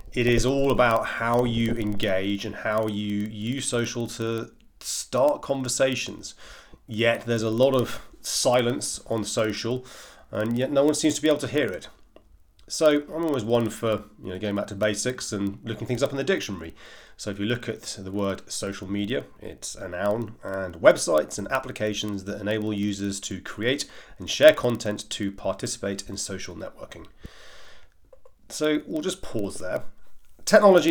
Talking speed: 170 wpm